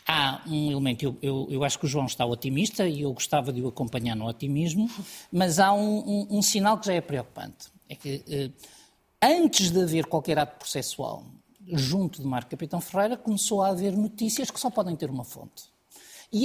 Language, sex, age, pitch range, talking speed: Portuguese, male, 50-69, 150-215 Hz, 195 wpm